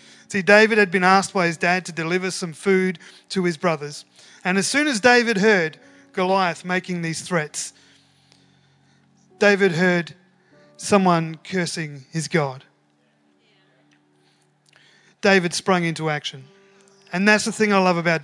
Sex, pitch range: male, 180-240 Hz